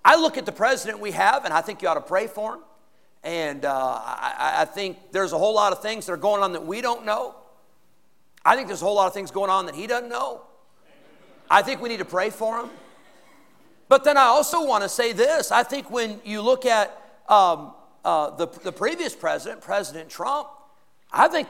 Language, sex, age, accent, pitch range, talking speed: English, male, 50-69, American, 180-245 Hz, 225 wpm